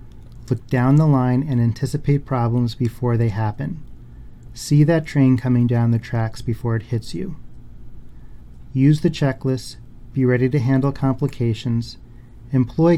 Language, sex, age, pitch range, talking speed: English, male, 30-49, 120-140 Hz, 140 wpm